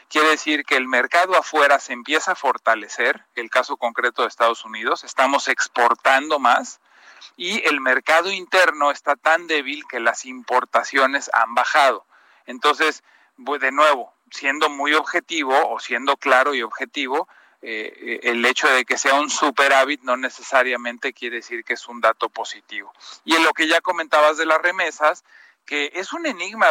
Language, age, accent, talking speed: Spanish, 40-59, Mexican, 165 wpm